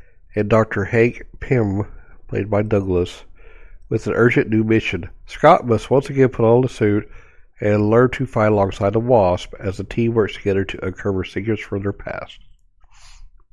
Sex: male